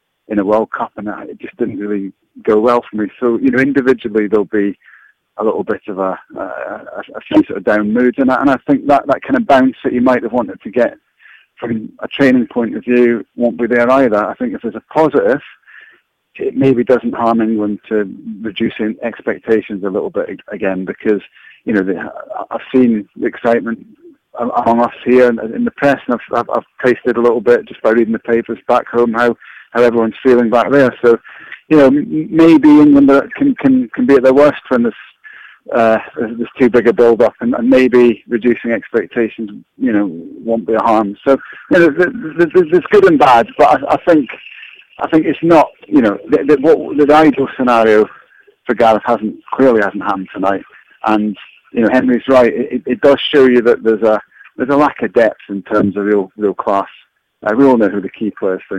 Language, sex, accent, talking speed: English, male, British, 210 wpm